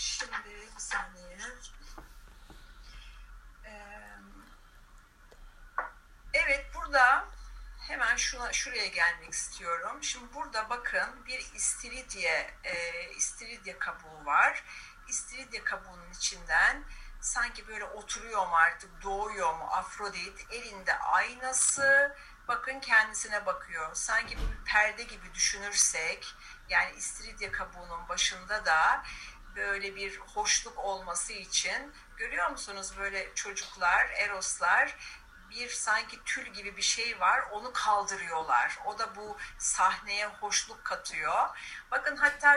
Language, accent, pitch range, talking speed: Turkish, native, 195-275 Hz, 100 wpm